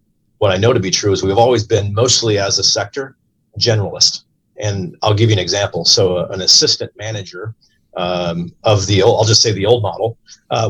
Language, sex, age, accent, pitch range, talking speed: English, male, 40-59, American, 95-115 Hz, 200 wpm